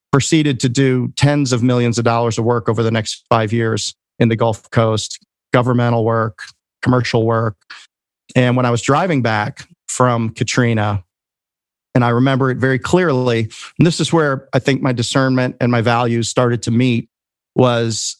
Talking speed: 170 wpm